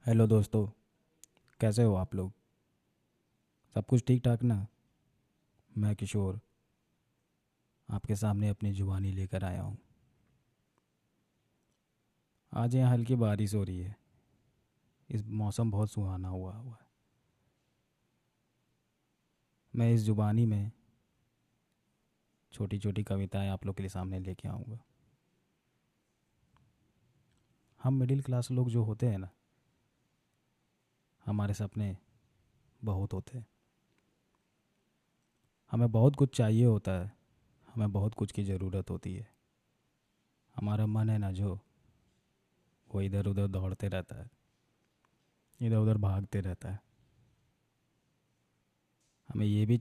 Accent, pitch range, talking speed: native, 100-120 Hz, 110 wpm